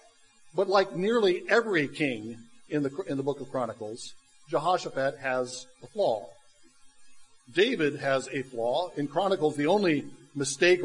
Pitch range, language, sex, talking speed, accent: 140-180 Hz, English, male, 140 wpm, American